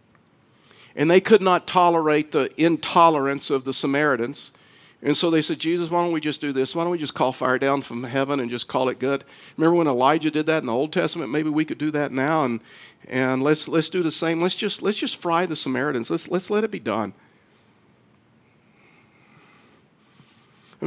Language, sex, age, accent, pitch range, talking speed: English, male, 50-69, American, 125-155 Hz, 205 wpm